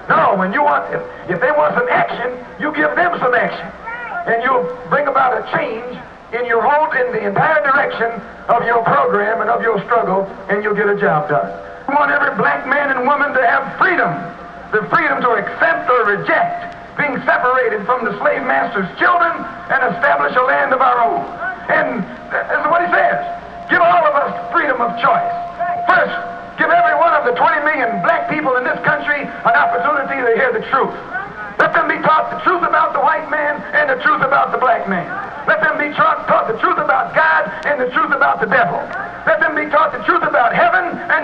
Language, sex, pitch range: English, male, 235-345 Hz